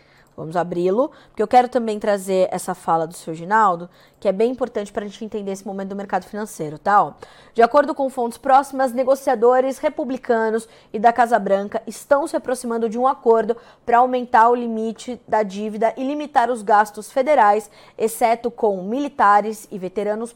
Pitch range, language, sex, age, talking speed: 195-245 Hz, Portuguese, female, 20-39, 175 wpm